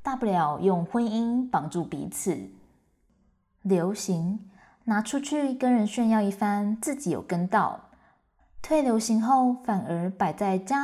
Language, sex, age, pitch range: Chinese, female, 20-39, 165-215 Hz